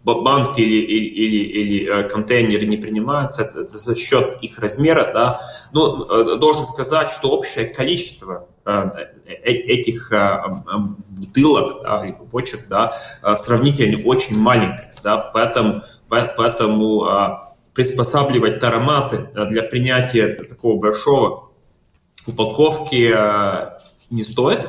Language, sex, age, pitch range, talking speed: Russian, male, 20-39, 105-135 Hz, 90 wpm